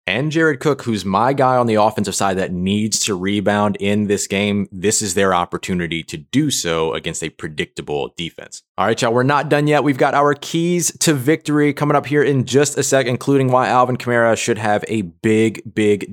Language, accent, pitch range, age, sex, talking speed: English, American, 100-135 Hz, 30-49, male, 210 wpm